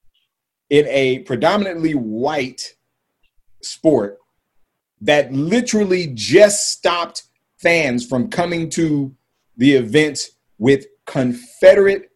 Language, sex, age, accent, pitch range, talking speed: English, male, 40-59, American, 125-190 Hz, 85 wpm